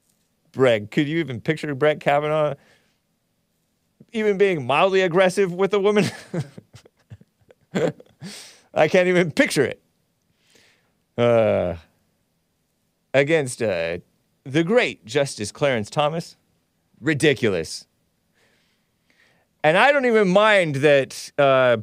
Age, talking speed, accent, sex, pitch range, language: 30-49, 95 wpm, American, male, 110-165 Hz, English